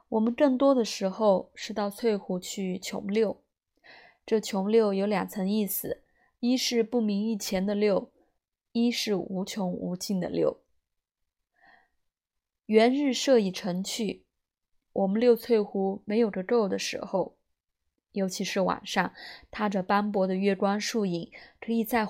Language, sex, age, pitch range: Chinese, female, 20-39, 190-230 Hz